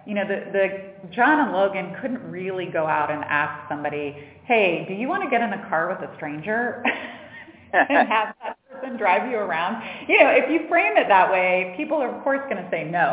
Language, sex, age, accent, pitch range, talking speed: English, female, 30-49, American, 155-195 Hz, 225 wpm